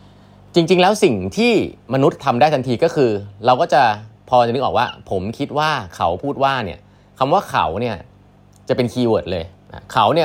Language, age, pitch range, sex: Thai, 30-49, 100-135 Hz, male